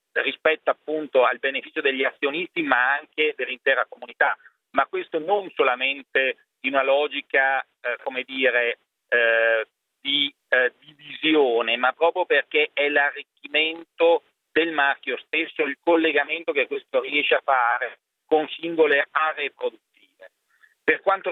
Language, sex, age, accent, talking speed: Italian, male, 40-59, native, 125 wpm